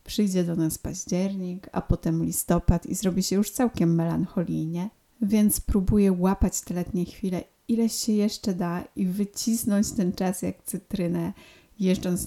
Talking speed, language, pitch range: 145 wpm, Polish, 175-205 Hz